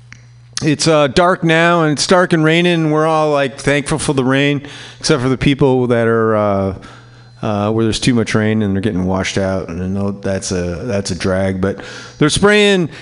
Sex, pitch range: male, 120-155 Hz